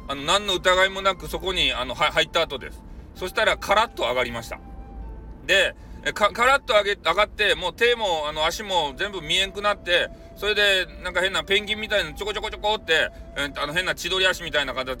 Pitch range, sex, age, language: 170-250 Hz, male, 40-59, Japanese